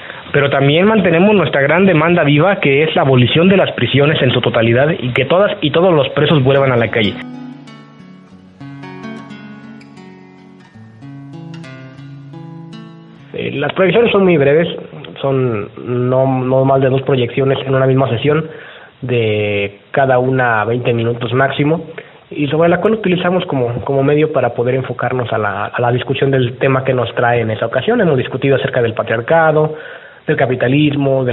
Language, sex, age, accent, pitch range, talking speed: Spanish, male, 30-49, Mexican, 125-150 Hz, 160 wpm